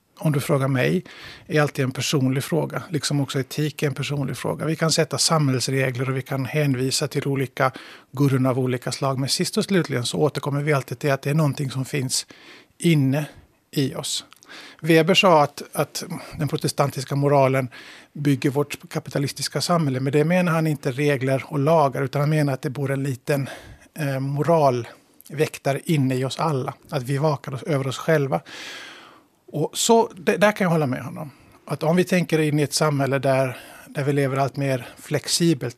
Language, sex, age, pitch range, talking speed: Finnish, male, 50-69, 135-155 Hz, 185 wpm